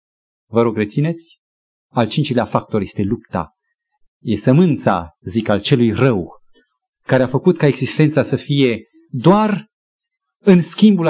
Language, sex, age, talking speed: Romanian, male, 40-59, 130 wpm